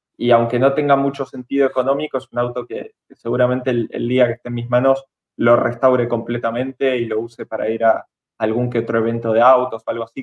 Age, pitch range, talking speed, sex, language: 20-39, 120-150 Hz, 230 wpm, male, Spanish